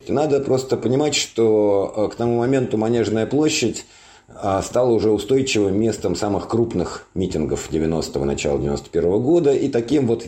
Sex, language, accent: male, Russian, native